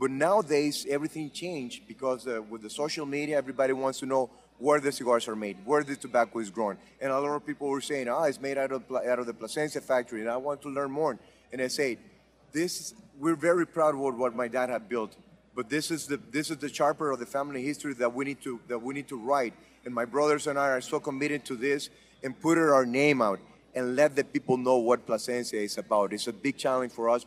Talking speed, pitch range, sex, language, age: 245 wpm, 125-145 Hz, male, English, 30-49